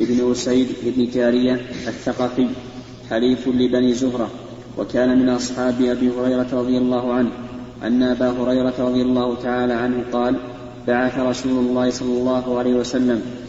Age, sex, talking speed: 20-39, male, 140 wpm